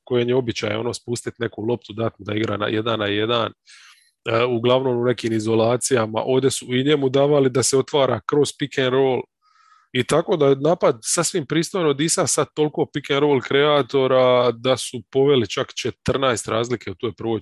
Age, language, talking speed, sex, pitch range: 20-39, English, 190 wpm, male, 115-135 Hz